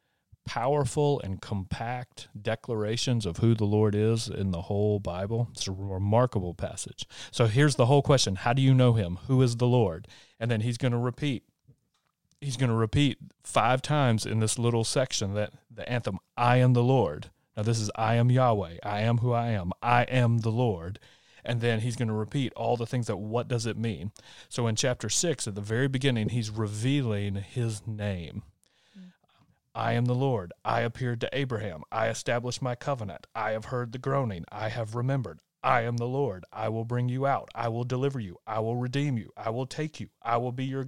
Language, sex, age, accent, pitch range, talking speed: English, male, 30-49, American, 110-130 Hz, 205 wpm